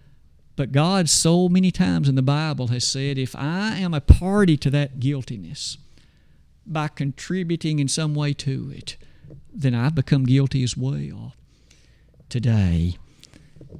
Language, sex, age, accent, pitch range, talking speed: English, male, 50-69, American, 130-175 Hz, 140 wpm